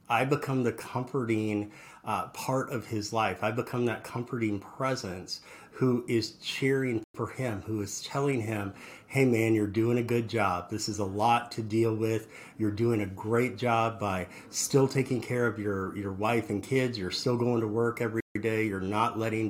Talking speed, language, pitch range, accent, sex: 190 wpm, English, 110-135 Hz, American, male